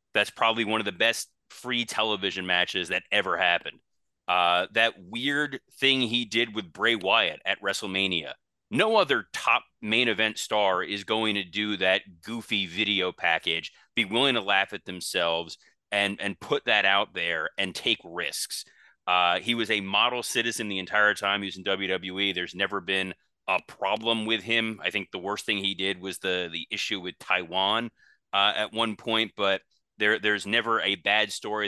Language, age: English, 30-49